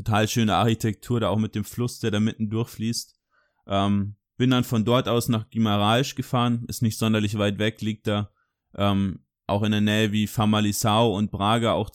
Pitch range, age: 105-120 Hz, 20-39